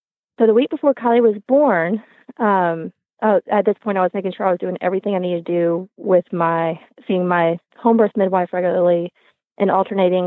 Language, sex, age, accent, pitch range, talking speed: English, female, 20-39, American, 175-220 Hz, 200 wpm